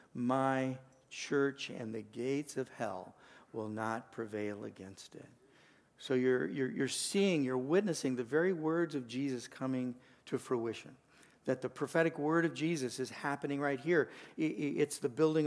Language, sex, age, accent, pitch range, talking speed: English, male, 50-69, American, 130-160 Hz, 155 wpm